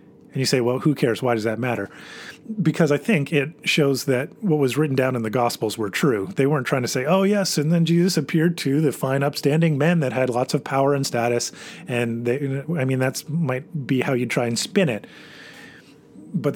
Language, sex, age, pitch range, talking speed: English, male, 30-49, 120-155 Hz, 225 wpm